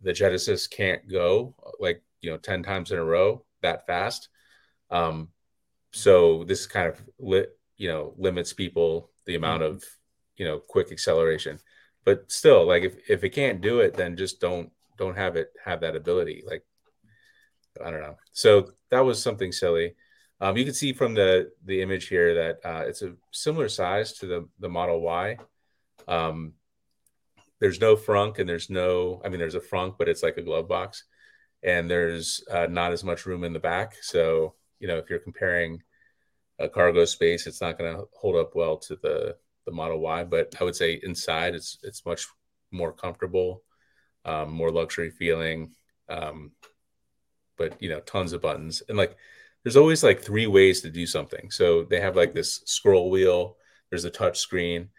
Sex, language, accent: male, English, American